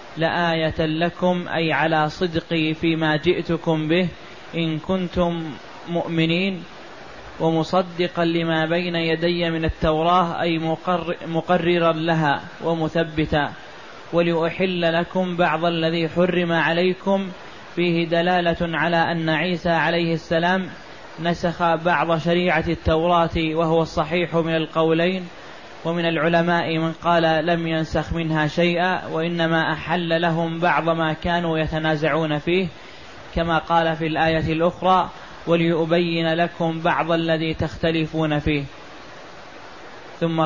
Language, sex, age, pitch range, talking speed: Arabic, male, 20-39, 160-175 Hz, 105 wpm